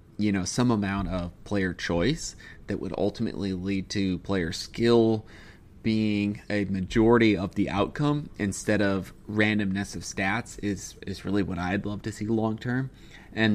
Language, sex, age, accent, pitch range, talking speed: English, male, 30-49, American, 95-110 Hz, 160 wpm